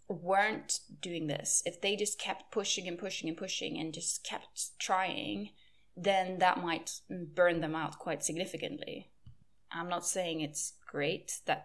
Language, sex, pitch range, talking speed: English, female, 150-190 Hz, 155 wpm